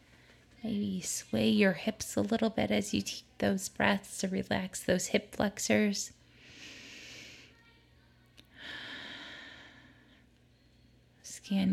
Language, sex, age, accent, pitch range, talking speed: English, female, 20-39, American, 185-225 Hz, 90 wpm